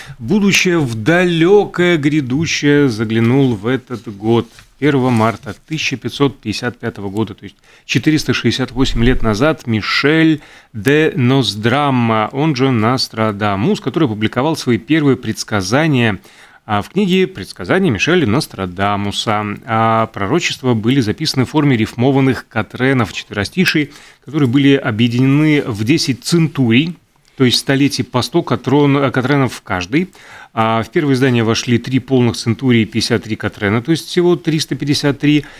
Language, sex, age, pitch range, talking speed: Russian, male, 30-49, 110-145 Hz, 120 wpm